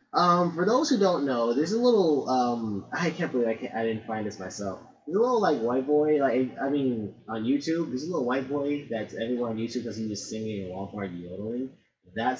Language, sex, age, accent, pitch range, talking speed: English, male, 20-39, American, 110-165 Hz, 225 wpm